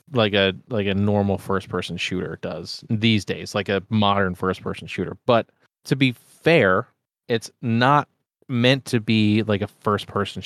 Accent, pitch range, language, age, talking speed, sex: American, 105-130 Hz, English, 30-49, 155 wpm, male